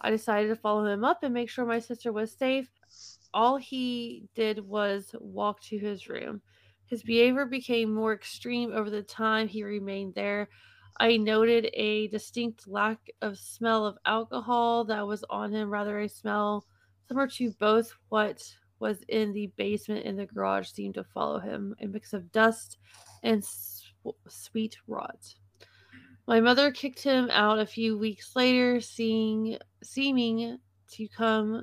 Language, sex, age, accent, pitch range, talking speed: English, female, 20-39, American, 205-230 Hz, 155 wpm